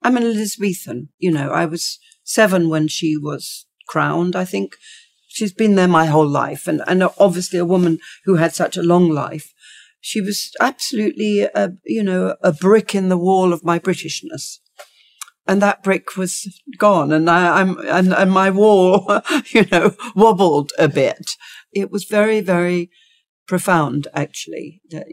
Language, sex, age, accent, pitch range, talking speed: English, female, 50-69, British, 170-215 Hz, 165 wpm